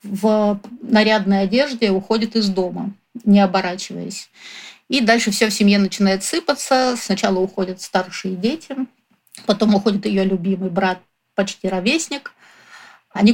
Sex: female